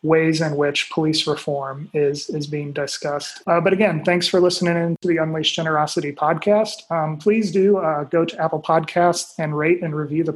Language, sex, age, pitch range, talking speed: English, male, 30-49, 150-170 Hz, 195 wpm